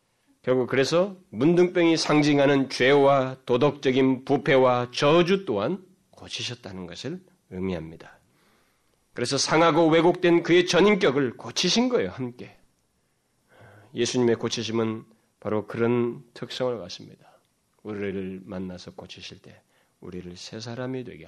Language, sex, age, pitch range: Korean, male, 30-49, 105-145 Hz